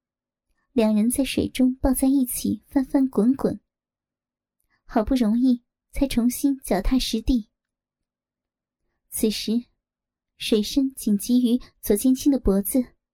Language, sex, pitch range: Chinese, male, 235-275 Hz